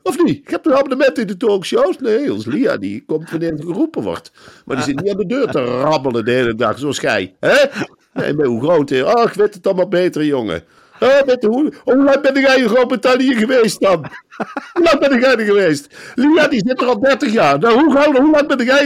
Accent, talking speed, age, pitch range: Dutch, 235 wpm, 50-69, 210-275 Hz